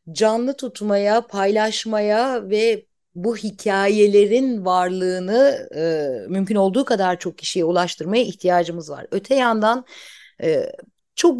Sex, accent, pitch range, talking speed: female, native, 175-220 Hz, 105 wpm